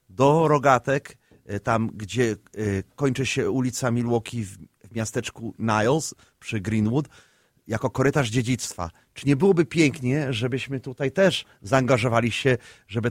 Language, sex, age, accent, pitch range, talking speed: Polish, male, 30-49, native, 115-140 Hz, 120 wpm